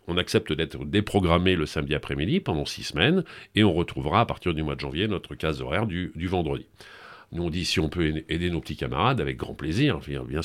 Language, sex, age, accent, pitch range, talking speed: French, male, 40-59, French, 80-110 Hz, 225 wpm